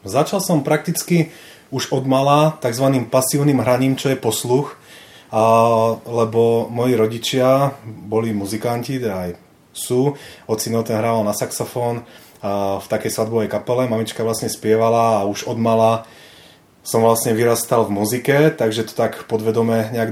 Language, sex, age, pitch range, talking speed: Czech, male, 30-49, 105-125 Hz, 145 wpm